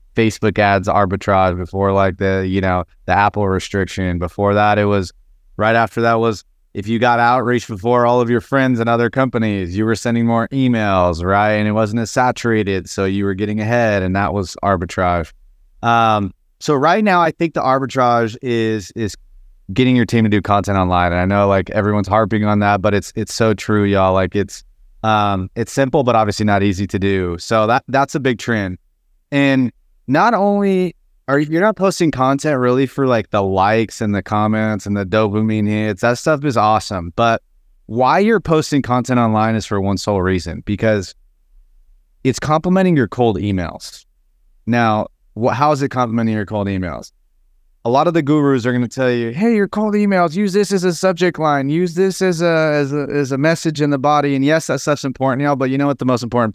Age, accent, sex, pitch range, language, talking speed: 30-49, American, male, 100-135 Hz, English, 205 wpm